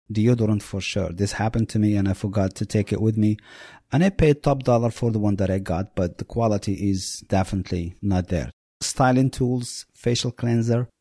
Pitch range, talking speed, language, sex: 105-125 Hz, 200 wpm, English, male